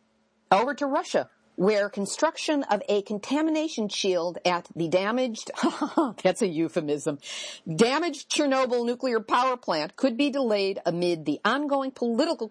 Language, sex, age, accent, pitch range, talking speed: English, female, 50-69, American, 185-250 Hz, 130 wpm